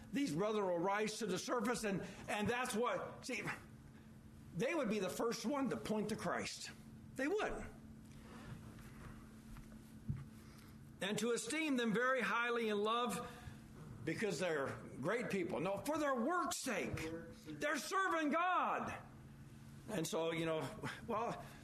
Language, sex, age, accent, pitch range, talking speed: English, male, 60-79, American, 180-275 Hz, 135 wpm